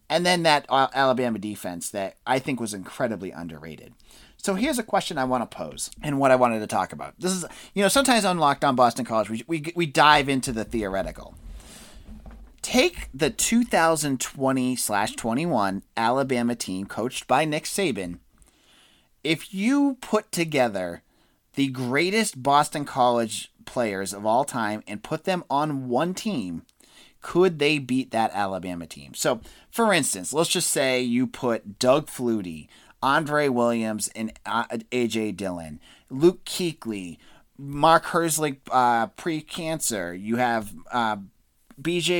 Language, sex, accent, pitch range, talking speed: English, male, American, 110-160 Hz, 145 wpm